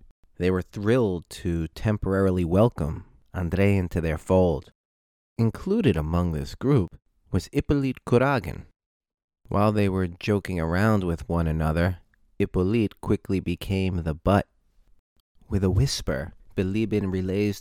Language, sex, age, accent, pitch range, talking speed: English, male, 30-49, American, 85-110 Hz, 120 wpm